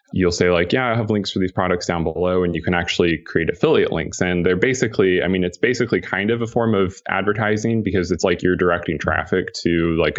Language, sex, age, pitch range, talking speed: English, male, 20-39, 80-95 Hz, 235 wpm